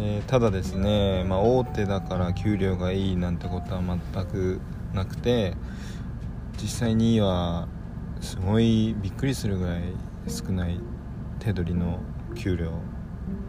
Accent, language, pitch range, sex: native, Japanese, 90-110 Hz, male